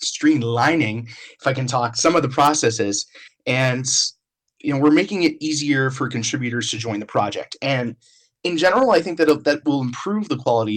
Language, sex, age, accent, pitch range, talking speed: English, male, 20-39, American, 115-150 Hz, 185 wpm